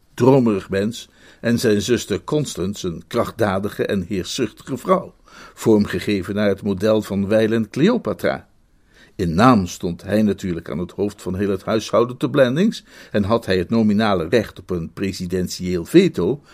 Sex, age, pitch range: male, 50-69, 105-140 Hz